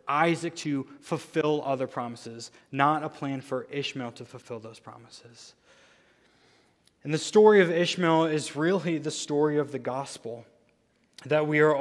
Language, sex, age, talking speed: English, male, 20-39, 145 wpm